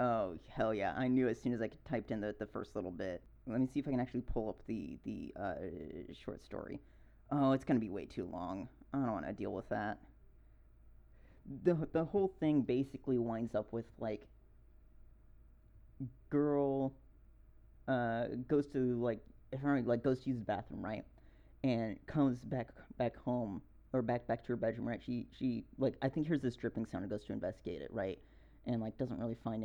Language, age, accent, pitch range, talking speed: English, 30-49, American, 115-130 Hz, 200 wpm